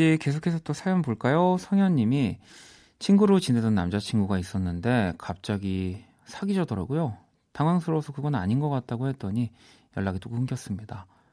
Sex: male